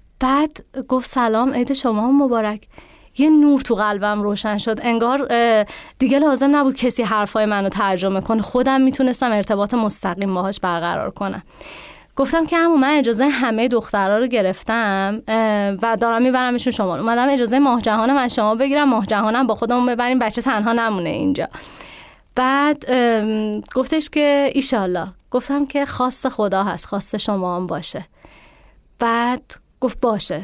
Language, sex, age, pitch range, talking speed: Persian, female, 20-39, 210-275 Hz, 145 wpm